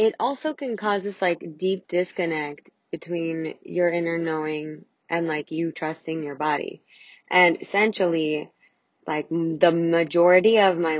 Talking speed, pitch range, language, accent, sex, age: 135 wpm, 155-180 Hz, English, American, female, 20-39